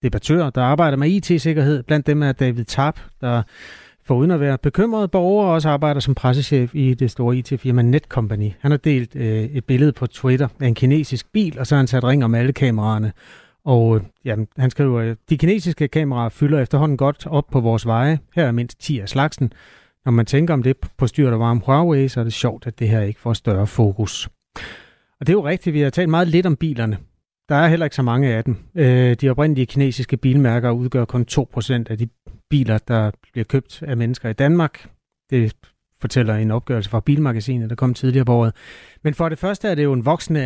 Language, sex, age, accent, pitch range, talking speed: Danish, male, 30-49, native, 120-145 Hz, 215 wpm